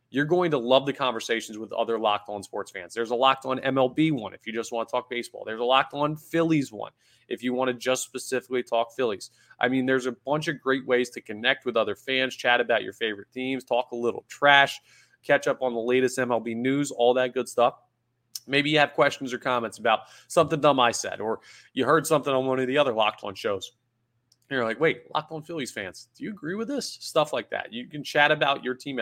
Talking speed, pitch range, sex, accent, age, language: 240 wpm, 120-140 Hz, male, American, 30-49, English